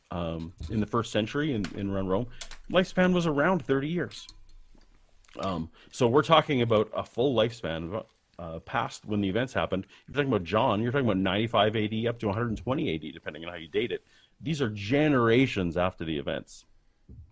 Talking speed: 185 wpm